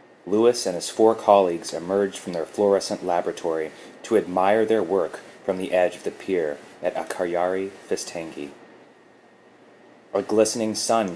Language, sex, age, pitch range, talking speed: English, male, 30-49, 95-110 Hz, 140 wpm